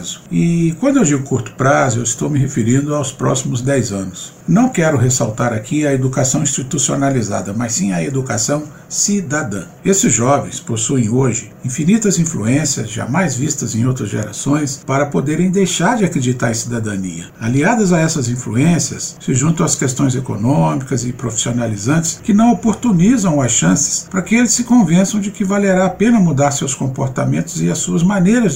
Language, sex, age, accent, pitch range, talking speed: Portuguese, male, 60-79, Brazilian, 130-185 Hz, 160 wpm